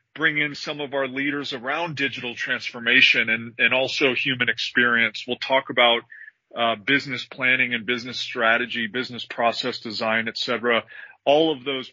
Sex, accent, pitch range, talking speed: male, American, 120-145 Hz, 155 wpm